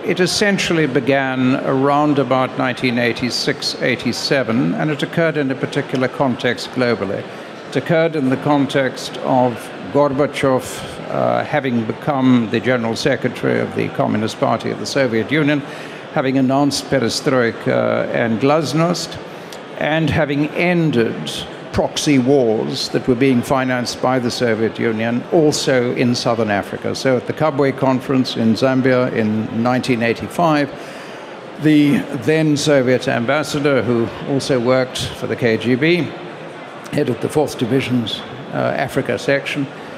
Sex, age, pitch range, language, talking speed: male, 60-79, 120-145 Hz, English, 125 wpm